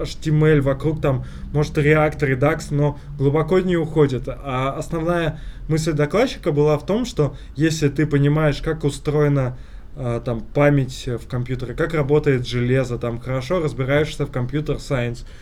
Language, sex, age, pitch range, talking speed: Russian, male, 20-39, 130-150 Hz, 140 wpm